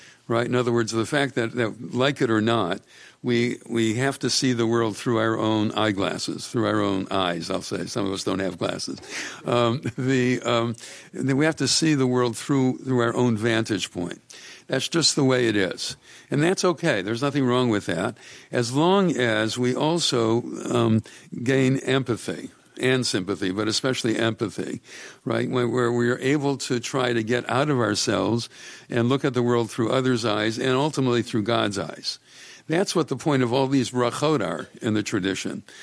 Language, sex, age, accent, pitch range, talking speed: English, male, 60-79, American, 110-130 Hz, 195 wpm